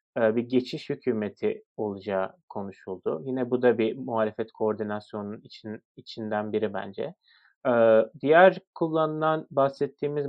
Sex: male